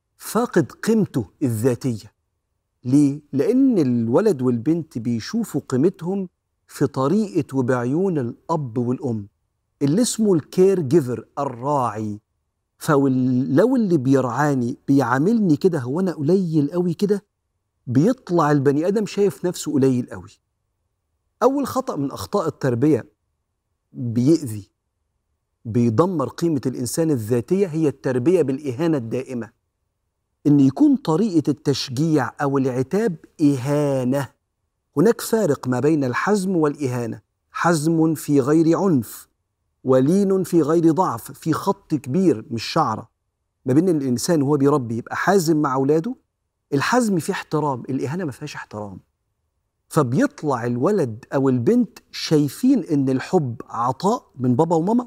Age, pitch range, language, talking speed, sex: 50-69, 120-170 Hz, Arabic, 110 wpm, male